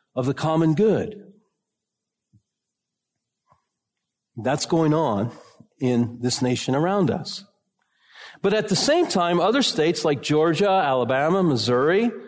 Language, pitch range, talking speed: English, 125-185 Hz, 110 wpm